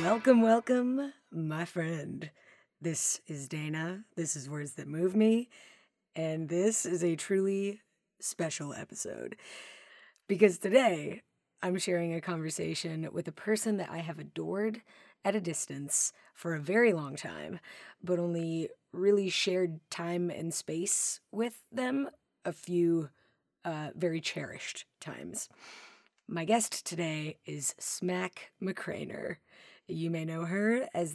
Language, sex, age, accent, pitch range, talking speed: English, female, 30-49, American, 160-205 Hz, 130 wpm